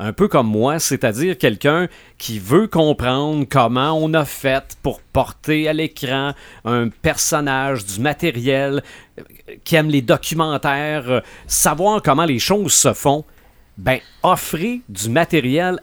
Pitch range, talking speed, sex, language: 130-170 Hz, 135 wpm, male, French